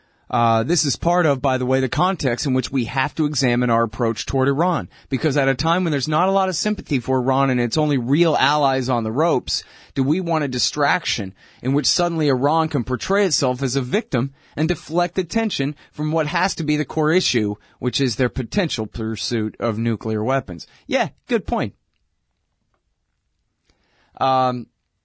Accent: American